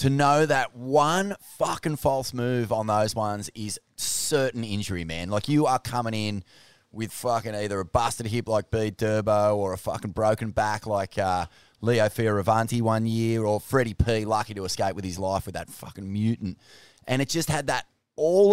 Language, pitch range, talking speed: English, 105-135 Hz, 190 wpm